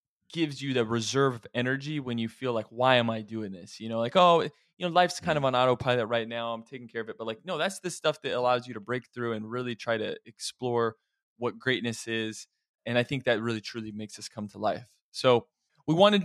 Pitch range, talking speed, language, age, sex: 115-135 Hz, 250 wpm, English, 20-39, male